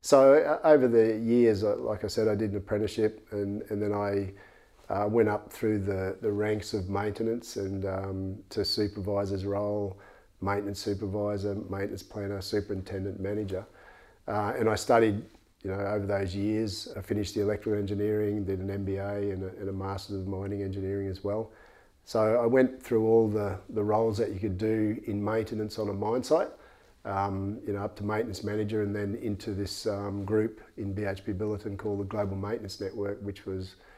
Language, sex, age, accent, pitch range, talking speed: English, male, 40-59, Australian, 100-110 Hz, 180 wpm